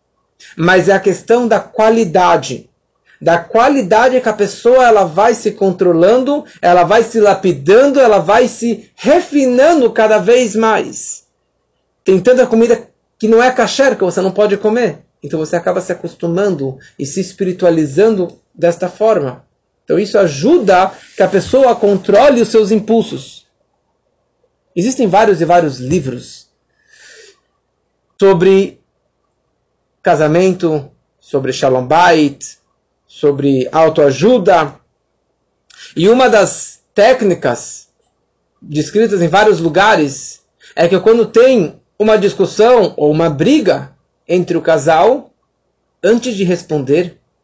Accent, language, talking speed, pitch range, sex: Brazilian, Portuguese, 120 wpm, 165-225 Hz, male